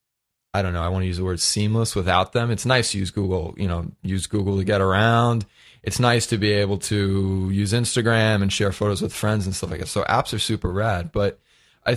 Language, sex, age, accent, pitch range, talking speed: English, male, 20-39, American, 95-120 Hz, 240 wpm